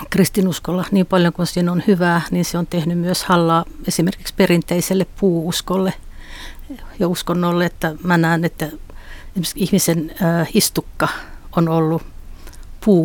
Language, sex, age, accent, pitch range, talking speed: Finnish, female, 60-79, native, 165-185 Hz, 120 wpm